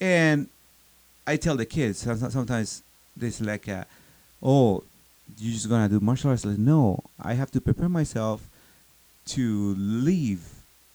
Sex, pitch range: male, 100-120 Hz